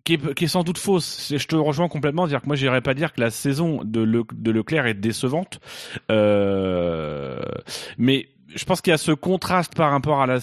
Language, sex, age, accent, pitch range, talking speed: French, male, 30-49, French, 125-175 Hz, 225 wpm